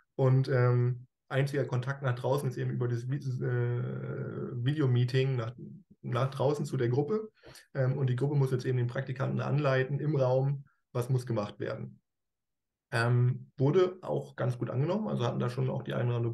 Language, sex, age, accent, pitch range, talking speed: German, male, 20-39, German, 110-130 Hz, 175 wpm